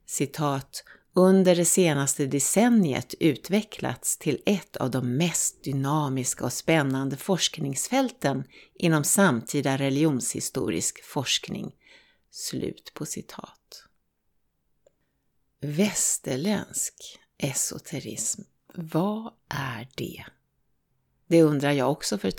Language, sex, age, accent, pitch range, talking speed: Swedish, female, 60-79, native, 140-205 Hz, 90 wpm